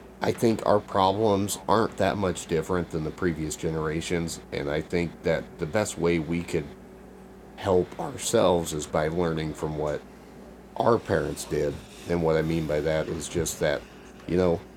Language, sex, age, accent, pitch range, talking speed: English, male, 30-49, American, 80-95 Hz, 170 wpm